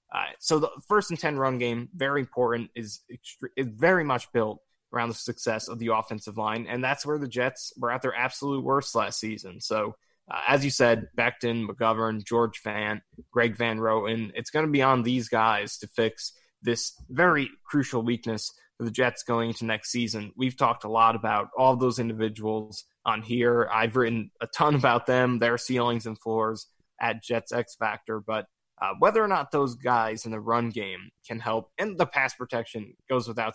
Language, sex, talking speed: English, male, 195 wpm